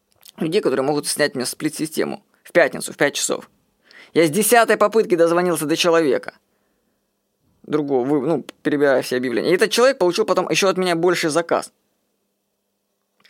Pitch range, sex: 165-225 Hz, female